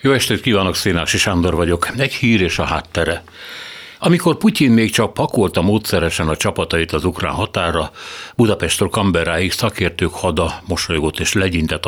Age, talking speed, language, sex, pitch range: 60-79, 145 wpm, Hungarian, male, 85-110 Hz